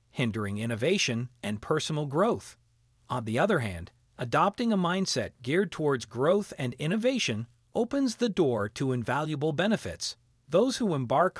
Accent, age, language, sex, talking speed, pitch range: American, 40-59, Italian, male, 135 wpm, 120-180 Hz